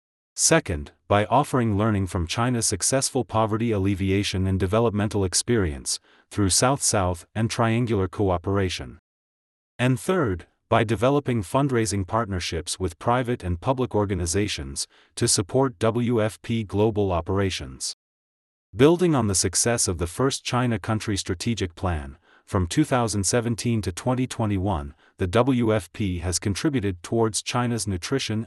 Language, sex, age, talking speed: English, male, 40-59, 115 wpm